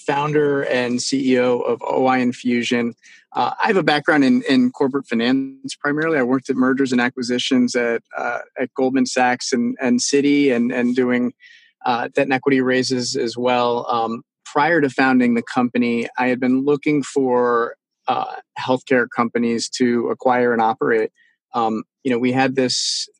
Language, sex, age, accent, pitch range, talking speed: English, male, 30-49, American, 120-140 Hz, 165 wpm